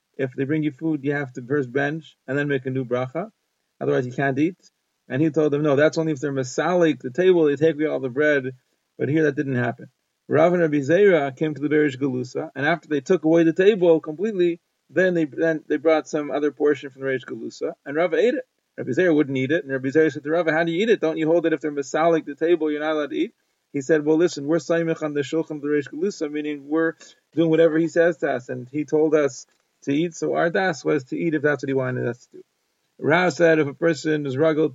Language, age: English, 40-59